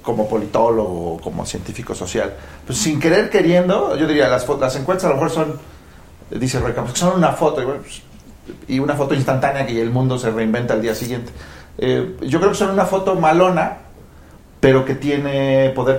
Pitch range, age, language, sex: 115-150 Hz, 40-59, Spanish, male